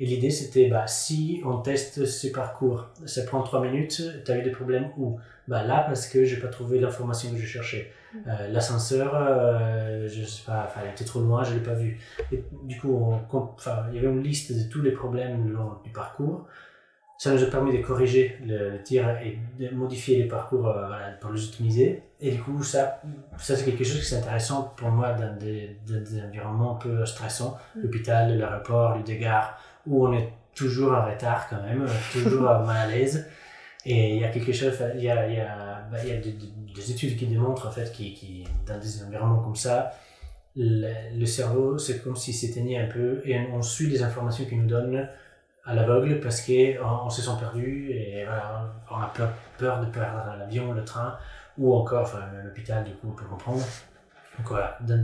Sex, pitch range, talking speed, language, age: male, 110-130 Hz, 210 wpm, French, 20-39